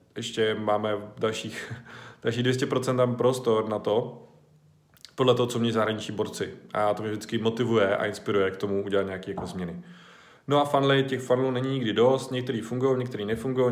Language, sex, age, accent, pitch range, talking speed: Czech, male, 20-39, native, 110-130 Hz, 170 wpm